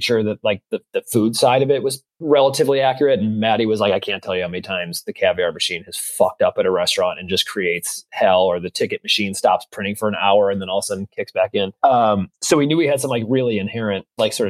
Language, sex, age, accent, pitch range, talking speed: English, male, 30-49, American, 105-135 Hz, 275 wpm